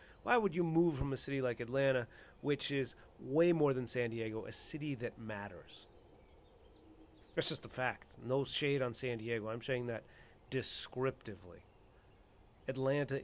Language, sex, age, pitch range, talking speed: English, male, 30-49, 110-140 Hz, 155 wpm